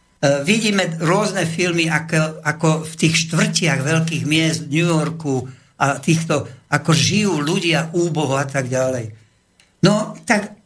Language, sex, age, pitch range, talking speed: Slovak, male, 60-79, 155-185 Hz, 135 wpm